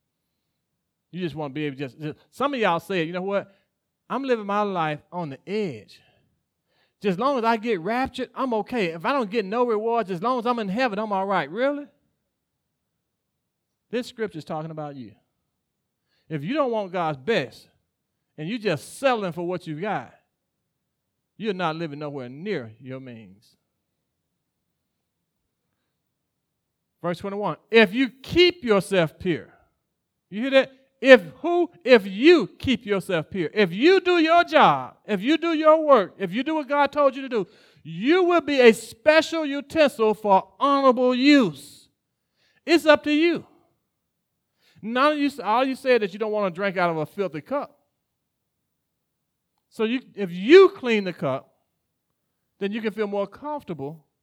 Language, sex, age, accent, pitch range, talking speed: English, male, 40-59, American, 175-265 Hz, 170 wpm